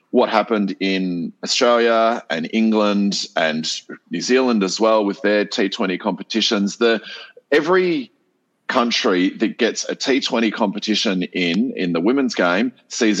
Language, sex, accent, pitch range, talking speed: English, male, Australian, 90-110 Hz, 125 wpm